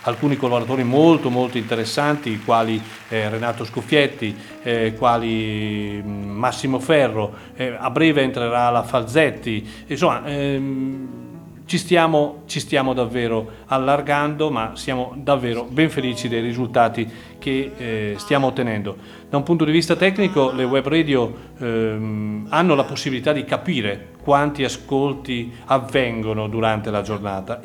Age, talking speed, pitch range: 40-59, 125 wpm, 115-145 Hz